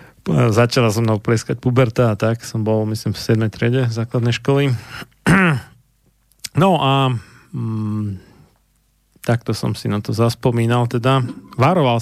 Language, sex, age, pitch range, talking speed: Slovak, male, 40-59, 115-135 Hz, 130 wpm